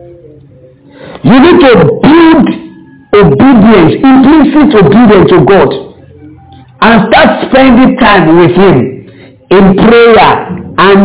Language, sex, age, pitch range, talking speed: English, male, 50-69, 175-265 Hz, 100 wpm